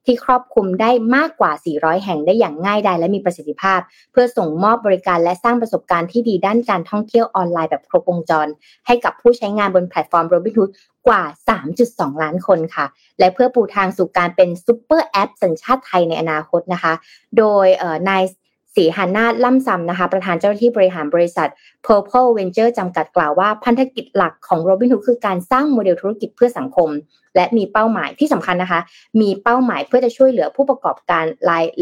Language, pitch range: Thai, 175-235 Hz